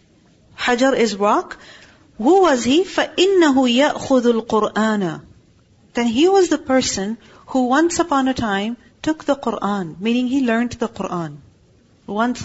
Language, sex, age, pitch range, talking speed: English, female, 40-59, 215-270 Hz, 135 wpm